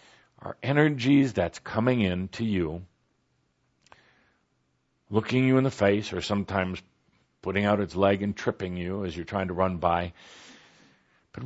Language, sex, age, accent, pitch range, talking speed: English, male, 50-69, American, 90-120 Hz, 145 wpm